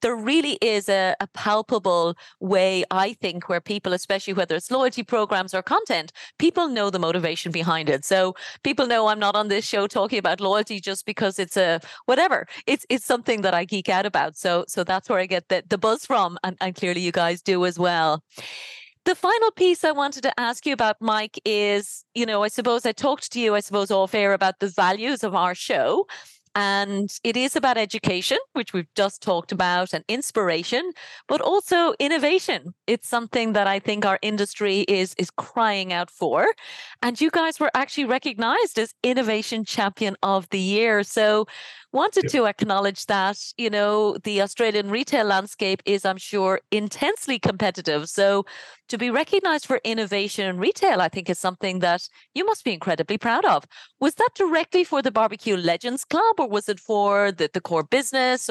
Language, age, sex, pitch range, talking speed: English, 30-49, female, 190-245 Hz, 190 wpm